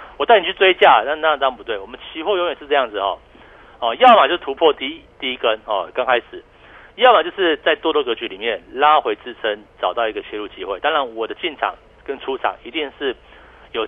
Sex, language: male, Chinese